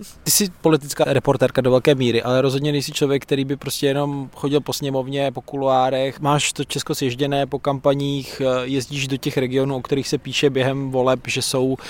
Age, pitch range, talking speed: 20-39, 125-145 Hz, 190 wpm